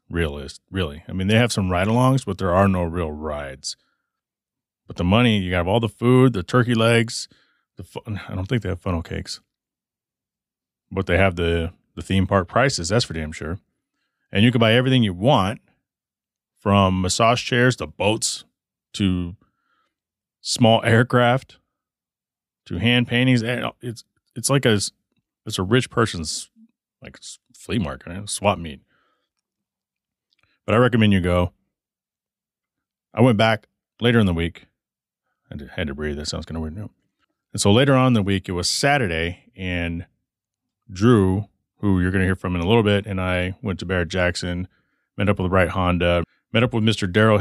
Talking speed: 170 wpm